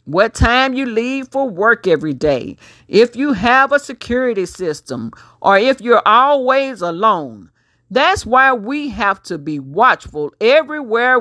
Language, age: English, 50-69